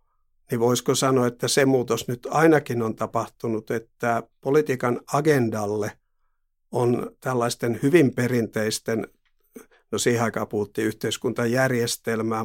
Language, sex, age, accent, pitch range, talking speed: Finnish, male, 50-69, native, 110-125 Hz, 100 wpm